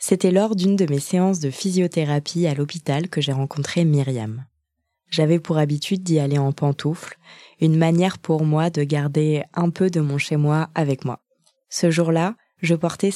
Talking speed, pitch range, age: 175 wpm, 150-180 Hz, 20-39